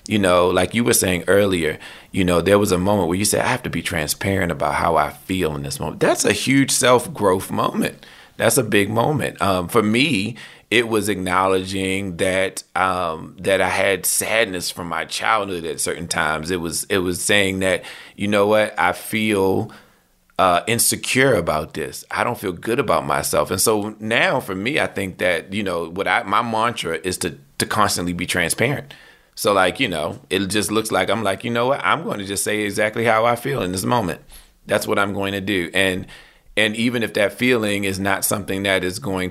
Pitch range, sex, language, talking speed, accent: 90-110 Hz, male, English, 210 wpm, American